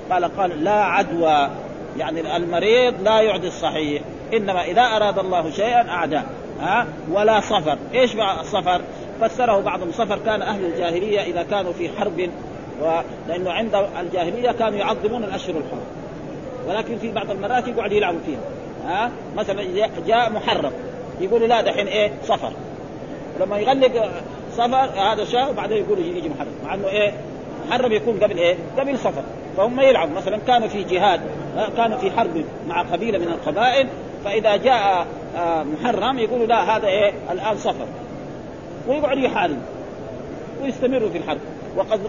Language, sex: Arabic, male